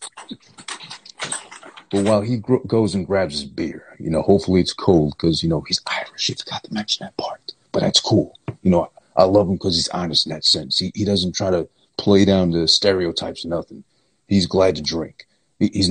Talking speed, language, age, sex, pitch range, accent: 210 wpm, English, 40-59, male, 95-135 Hz, American